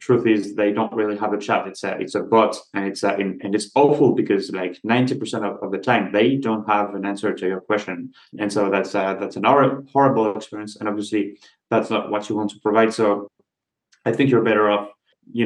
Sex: male